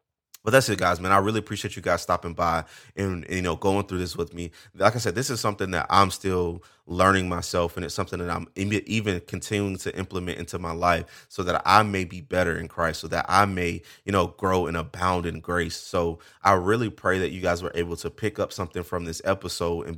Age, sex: 20-39, male